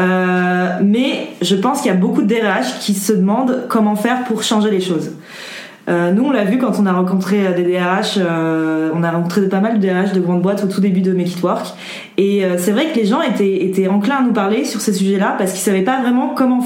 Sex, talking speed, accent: female, 255 wpm, French